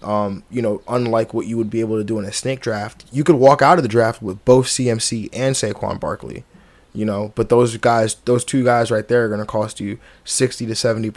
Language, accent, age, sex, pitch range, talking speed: English, American, 20-39, male, 110-125 Hz, 245 wpm